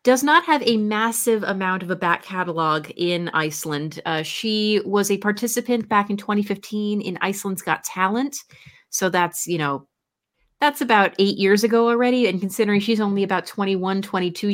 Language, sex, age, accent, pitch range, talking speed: English, female, 30-49, American, 170-215 Hz, 170 wpm